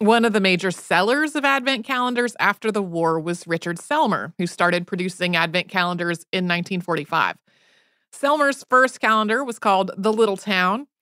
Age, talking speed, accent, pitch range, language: 30-49, 160 wpm, American, 175-220 Hz, English